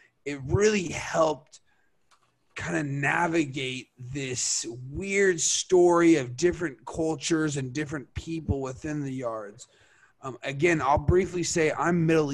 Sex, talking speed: male, 120 wpm